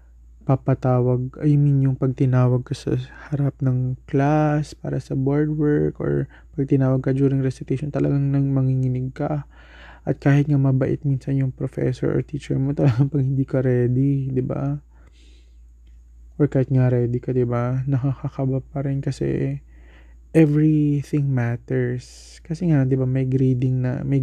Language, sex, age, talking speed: Filipino, male, 20-39, 155 wpm